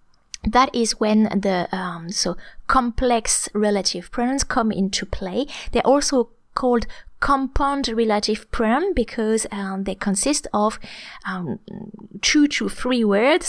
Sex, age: female, 20-39